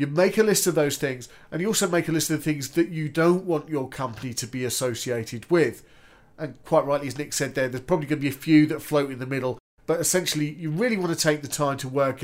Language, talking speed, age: English, 275 wpm, 40-59